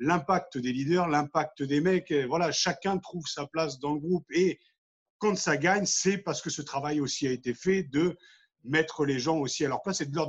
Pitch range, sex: 135-175 Hz, male